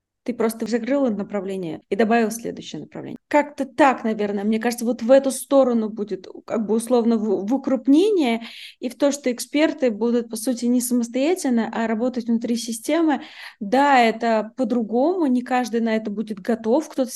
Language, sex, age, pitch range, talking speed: Russian, female, 20-39, 225-270 Hz, 170 wpm